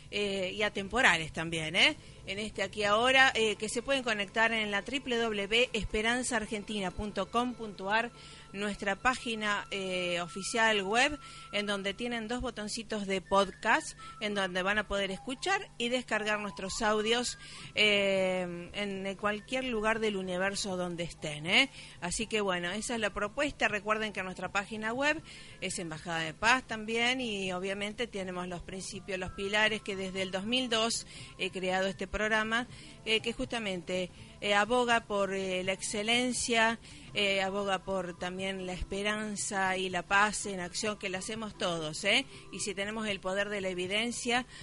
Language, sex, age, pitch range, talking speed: Spanish, female, 40-59, 185-225 Hz, 150 wpm